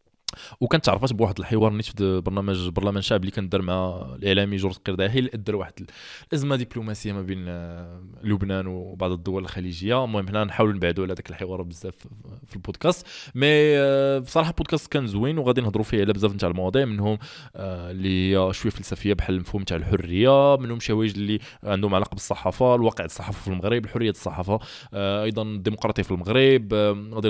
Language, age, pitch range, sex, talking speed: Arabic, 20-39, 95-120 Hz, male, 155 wpm